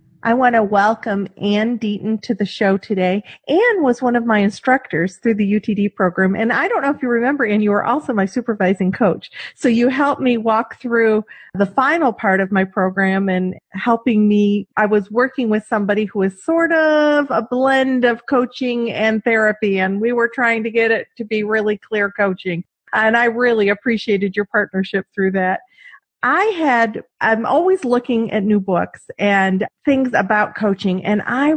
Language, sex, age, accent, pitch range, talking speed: English, female, 40-59, American, 200-250 Hz, 185 wpm